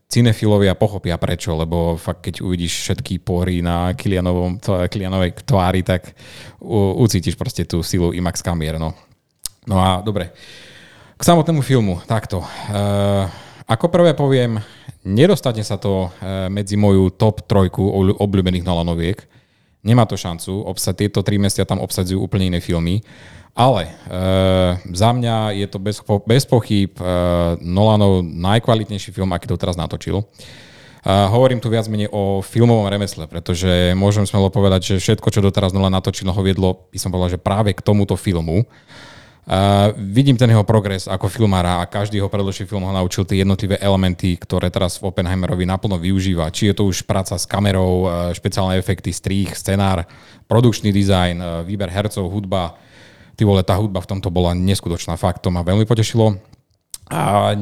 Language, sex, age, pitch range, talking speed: Slovak, male, 30-49, 90-110 Hz, 155 wpm